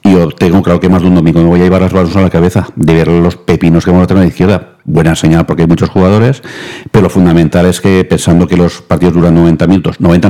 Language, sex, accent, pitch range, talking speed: Spanish, male, Spanish, 85-95 Hz, 275 wpm